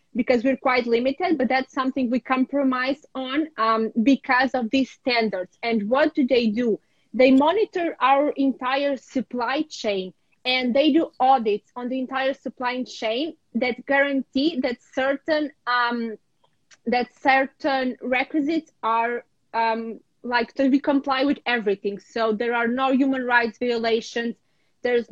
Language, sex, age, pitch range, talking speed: Portuguese, female, 20-39, 235-270 Hz, 145 wpm